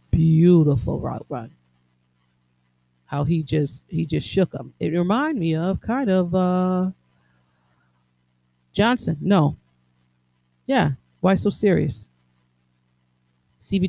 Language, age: English, 40-59